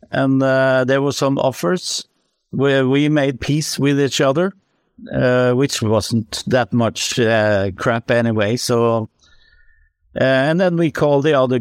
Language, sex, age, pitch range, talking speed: English, male, 60-79, 110-135 Hz, 150 wpm